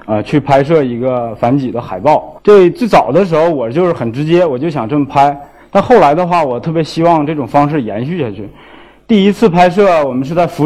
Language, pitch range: Chinese, 135-180 Hz